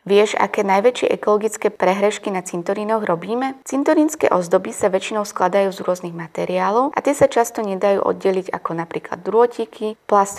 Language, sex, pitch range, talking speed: Slovak, female, 180-230 Hz, 150 wpm